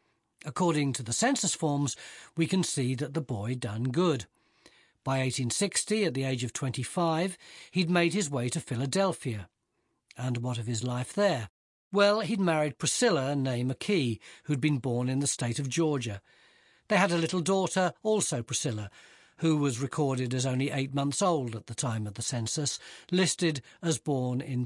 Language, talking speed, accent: English, 175 wpm, British